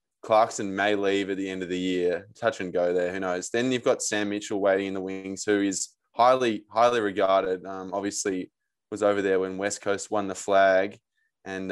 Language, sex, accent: English, male, Australian